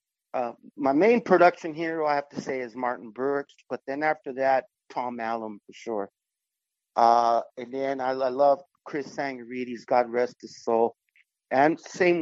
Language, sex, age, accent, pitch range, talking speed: English, male, 50-69, American, 125-150 Hz, 165 wpm